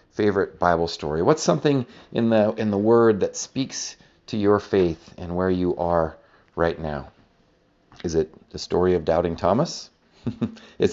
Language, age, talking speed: English, 40-59, 160 wpm